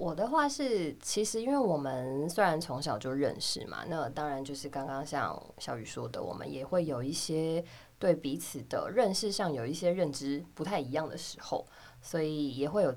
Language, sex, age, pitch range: Chinese, female, 20-39, 140-175 Hz